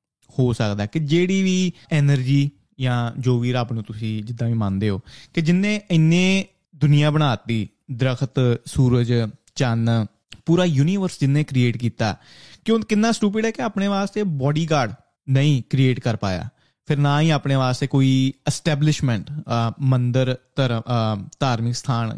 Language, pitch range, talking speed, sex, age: Punjabi, 120-155 Hz, 135 wpm, male, 20-39